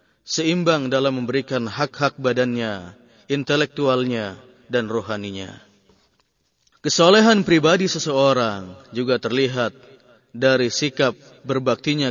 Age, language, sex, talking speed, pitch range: 30-49, Indonesian, male, 80 wpm, 115-135 Hz